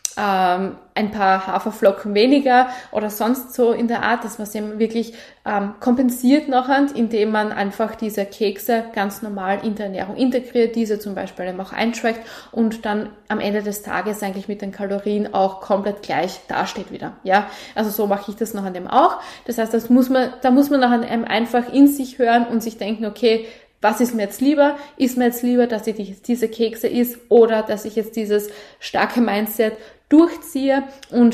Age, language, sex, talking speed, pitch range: 20-39, German, female, 195 wpm, 205-240 Hz